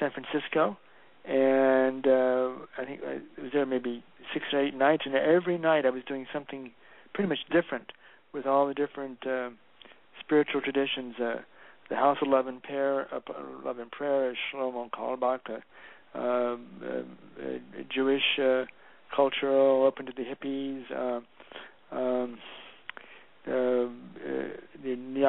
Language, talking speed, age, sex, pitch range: English, 135 wpm, 60-79, male, 125-140 Hz